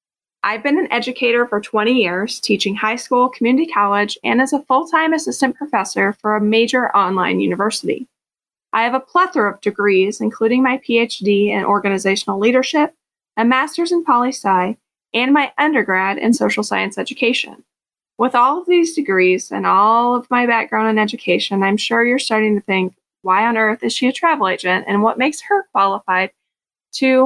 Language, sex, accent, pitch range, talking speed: English, female, American, 205-265 Hz, 170 wpm